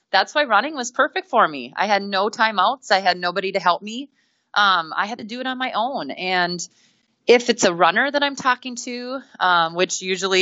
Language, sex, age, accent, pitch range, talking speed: English, female, 30-49, American, 165-210 Hz, 220 wpm